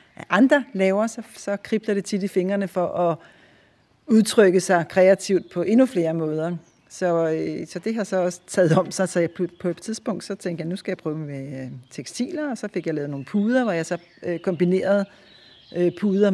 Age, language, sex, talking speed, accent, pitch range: 60-79, Danish, female, 190 wpm, native, 170-200 Hz